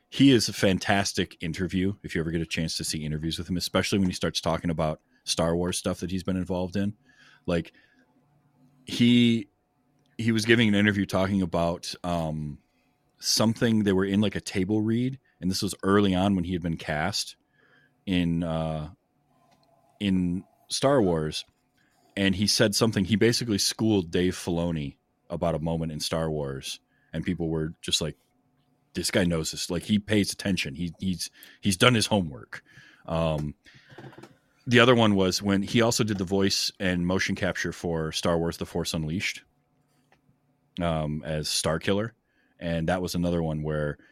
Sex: male